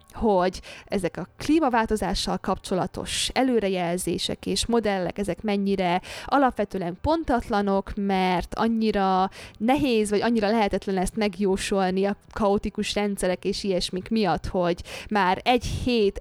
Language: Hungarian